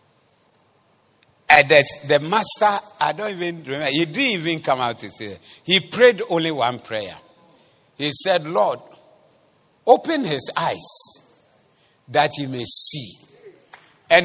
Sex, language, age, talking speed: male, English, 50-69, 130 wpm